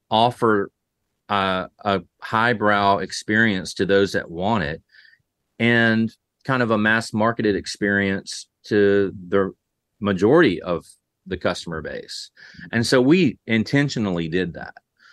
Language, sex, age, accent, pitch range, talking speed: English, male, 30-49, American, 95-110 Hz, 120 wpm